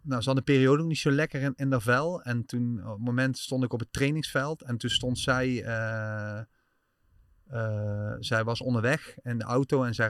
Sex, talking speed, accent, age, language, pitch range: male, 220 wpm, Dutch, 30-49, Dutch, 110-130 Hz